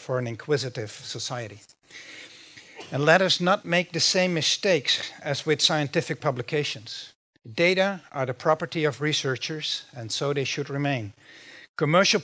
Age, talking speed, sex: 50-69, 135 wpm, male